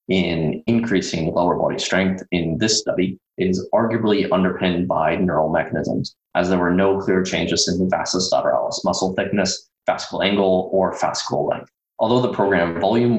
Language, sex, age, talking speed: English, male, 20-39, 160 wpm